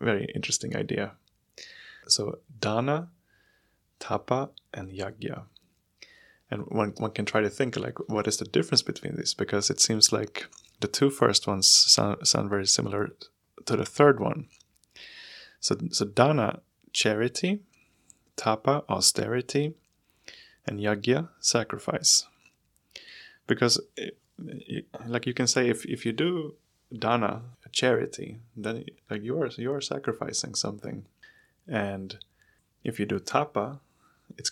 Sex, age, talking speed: male, 20-39, 125 wpm